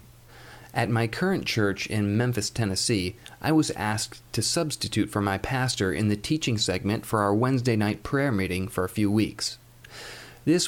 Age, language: 40-59, English